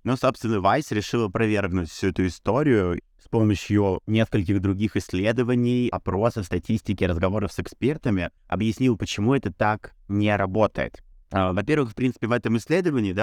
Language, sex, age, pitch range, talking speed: Russian, male, 30-49, 95-120 Hz, 135 wpm